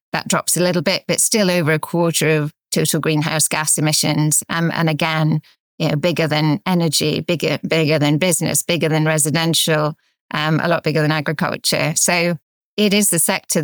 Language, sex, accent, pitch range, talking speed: English, female, British, 155-175 Hz, 180 wpm